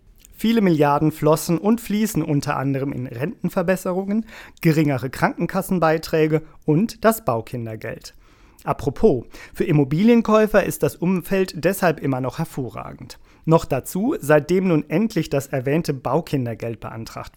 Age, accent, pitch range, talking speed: 40-59, German, 130-170 Hz, 115 wpm